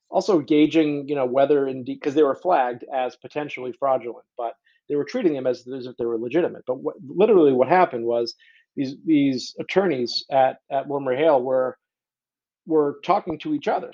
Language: English